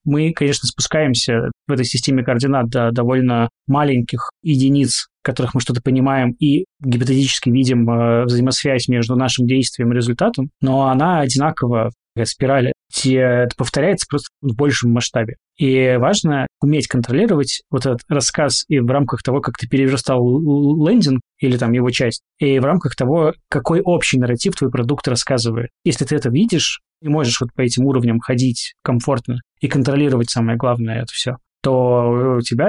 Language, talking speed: Russian, 160 wpm